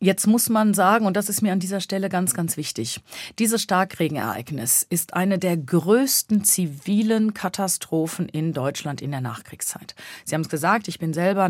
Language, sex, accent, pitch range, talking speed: German, female, German, 160-195 Hz, 175 wpm